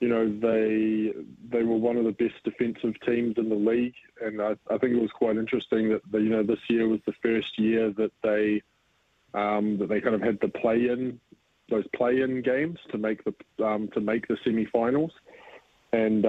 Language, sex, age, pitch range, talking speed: English, male, 20-39, 105-115 Hz, 205 wpm